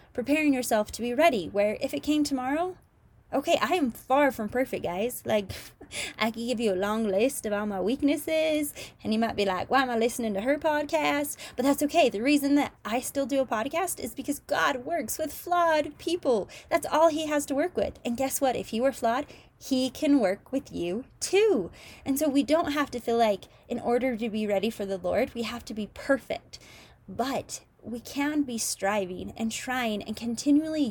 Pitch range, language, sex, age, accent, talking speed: 210-285 Hz, English, female, 20-39, American, 210 wpm